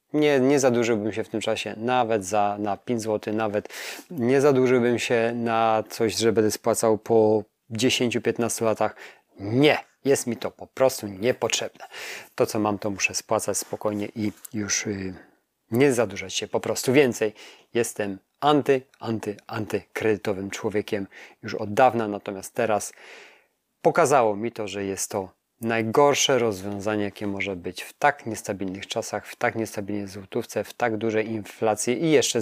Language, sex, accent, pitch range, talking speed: Polish, male, native, 105-125 Hz, 150 wpm